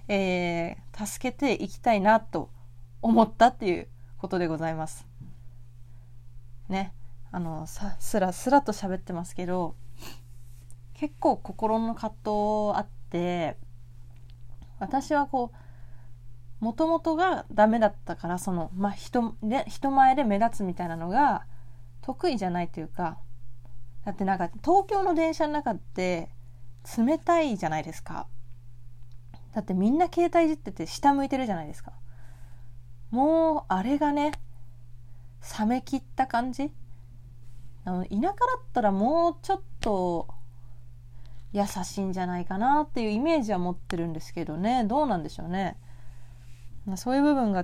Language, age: Japanese, 20-39